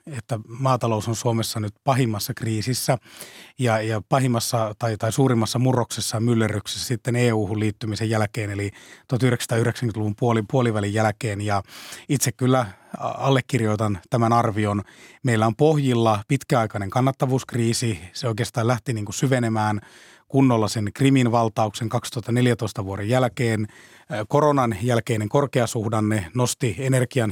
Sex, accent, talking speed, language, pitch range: male, native, 110 wpm, Finnish, 110-125 Hz